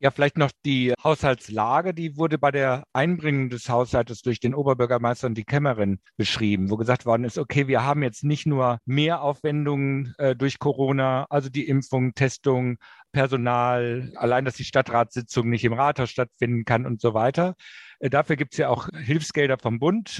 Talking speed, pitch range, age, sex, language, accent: 170 wpm, 120-140 Hz, 50-69, male, German, German